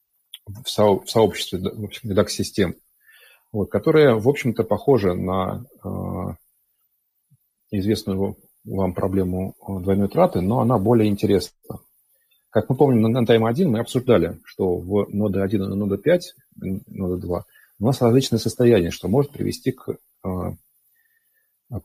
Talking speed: 130 wpm